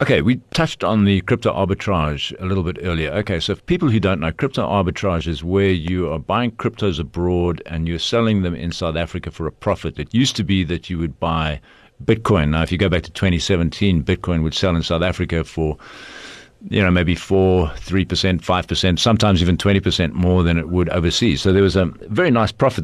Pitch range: 85-105 Hz